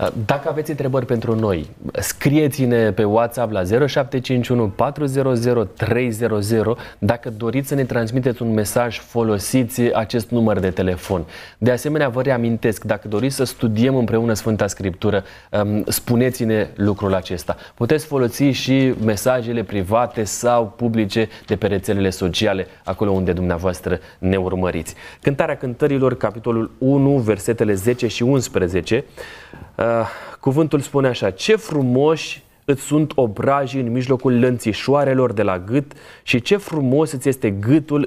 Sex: male